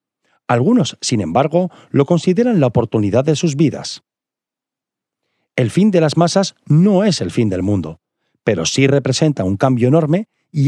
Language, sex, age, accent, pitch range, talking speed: Spanish, male, 40-59, Spanish, 110-165 Hz, 155 wpm